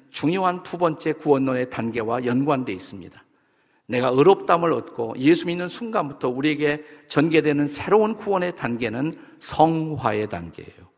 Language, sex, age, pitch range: Korean, male, 50-69, 125-180 Hz